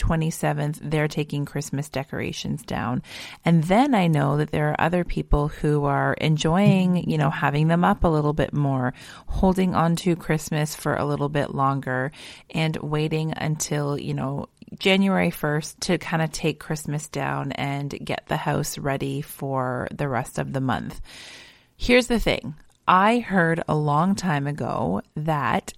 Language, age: English, 30-49